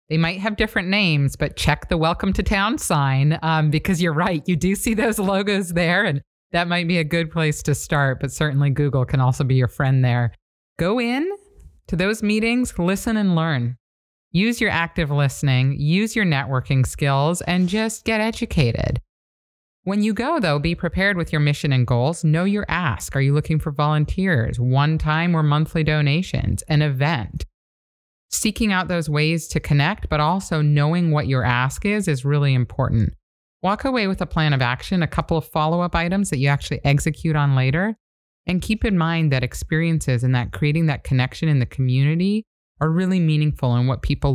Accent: American